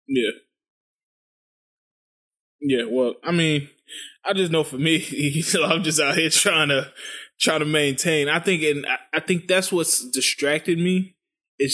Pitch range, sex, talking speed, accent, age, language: 125-160 Hz, male, 160 wpm, American, 20-39, English